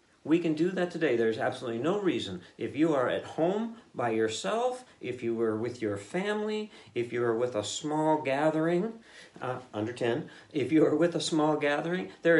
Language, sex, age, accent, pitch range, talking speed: English, male, 50-69, American, 110-155 Hz, 195 wpm